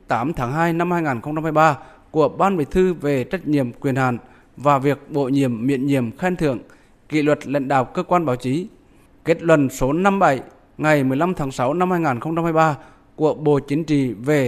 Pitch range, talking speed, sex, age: 130-160 Hz, 185 wpm, male, 20-39